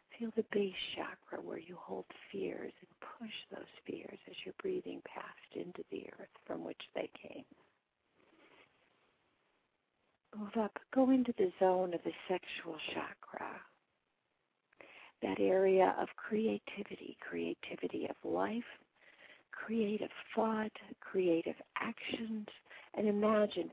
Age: 50-69